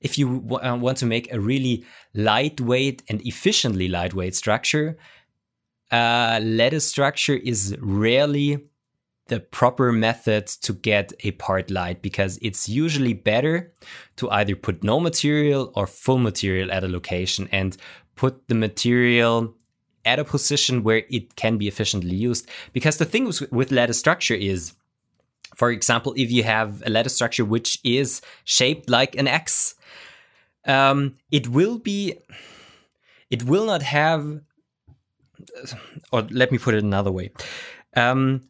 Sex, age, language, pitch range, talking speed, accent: male, 20-39, English, 110-140 Hz, 140 wpm, German